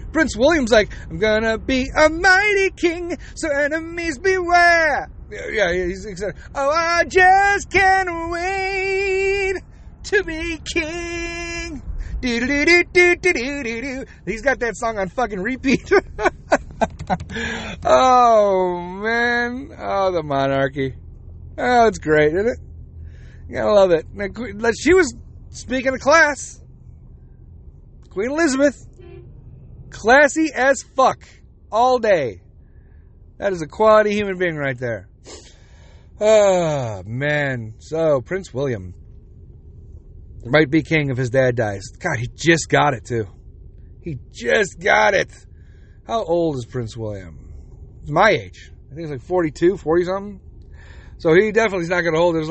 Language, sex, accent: English, male, American